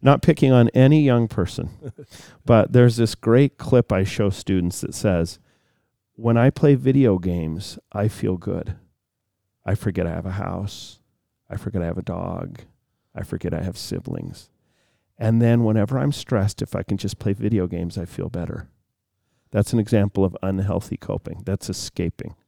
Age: 40-59